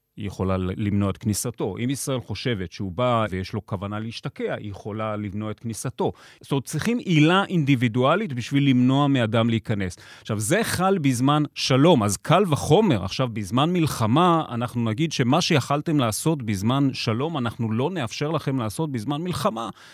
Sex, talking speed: male, 160 wpm